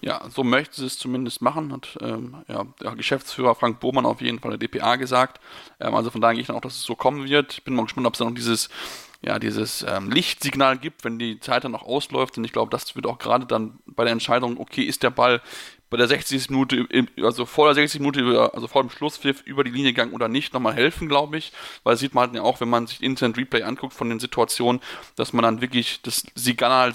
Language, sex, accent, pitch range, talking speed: German, male, German, 115-135 Hz, 245 wpm